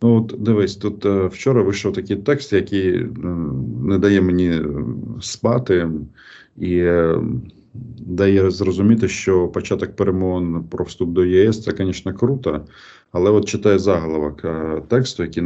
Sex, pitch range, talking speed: male, 85-105 Hz, 120 wpm